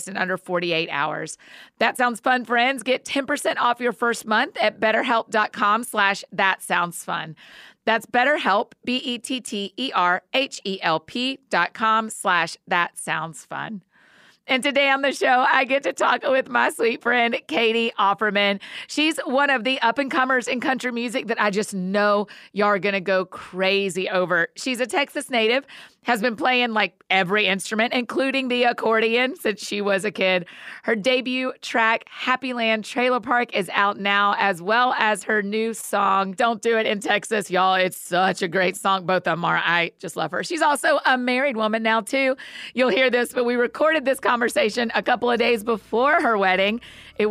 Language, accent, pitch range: English, American, 190-250 Hz